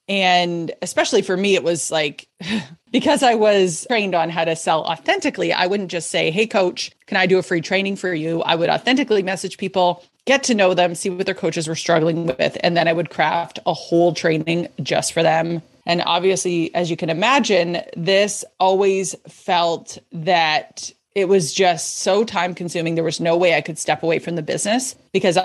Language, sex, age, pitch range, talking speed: English, female, 30-49, 170-215 Hz, 200 wpm